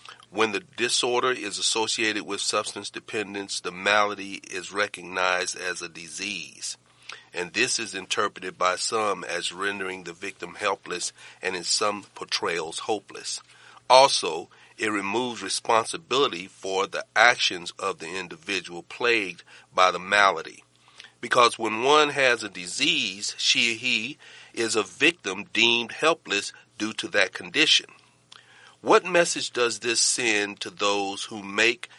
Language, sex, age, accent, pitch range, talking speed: English, male, 40-59, American, 95-115 Hz, 135 wpm